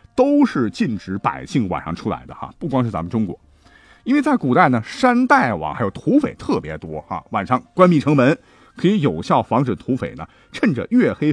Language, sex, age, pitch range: Chinese, male, 50-69, 115-190 Hz